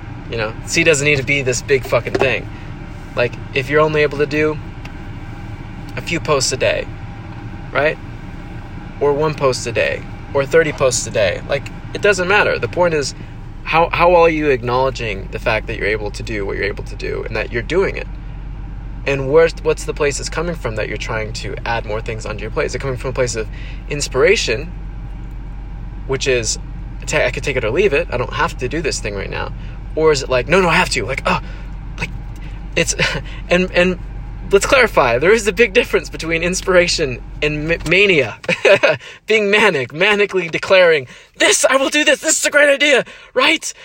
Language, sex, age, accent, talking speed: English, male, 20-39, American, 205 wpm